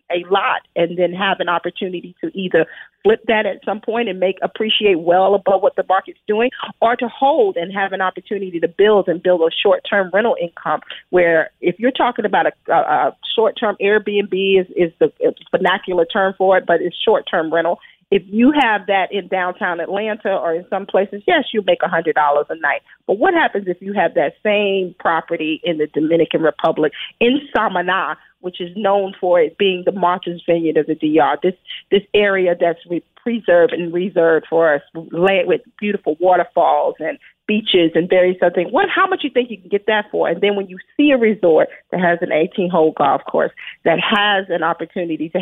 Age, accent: 40-59, American